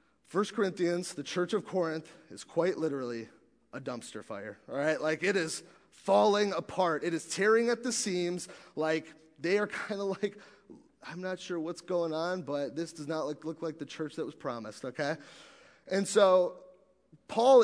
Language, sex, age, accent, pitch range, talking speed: English, male, 30-49, American, 160-210 Hz, 180 wpm